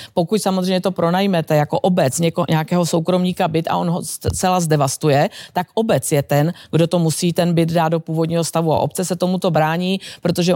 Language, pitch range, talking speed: Czech, 160-185 Hz, 195 wpm